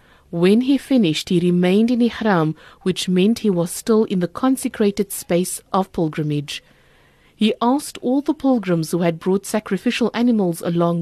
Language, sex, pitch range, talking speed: English, female, 170-225 Hz, 160 wpm